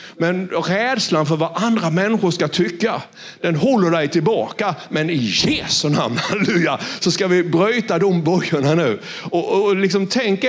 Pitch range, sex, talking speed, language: 155-195 Hz, male, 165 wpm, Swedish